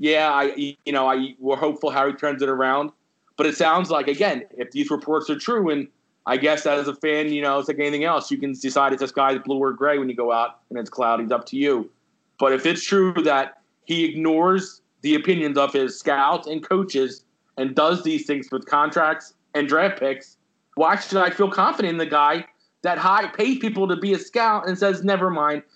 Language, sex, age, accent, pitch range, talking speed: English, male, 30-49, American, 145-180 Hz, 225 wpm